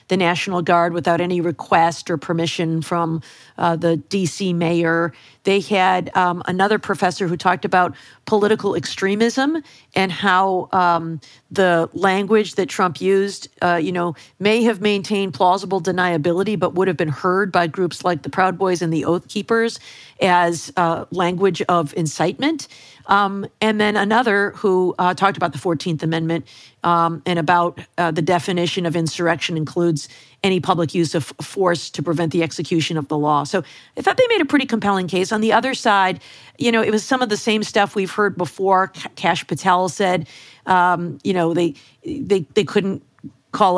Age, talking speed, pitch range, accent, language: 50-69, 175 wpm, 165-195 Hz, American, English